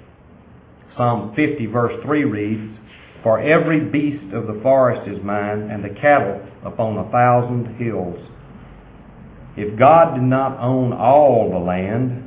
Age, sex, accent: 50-69, male, American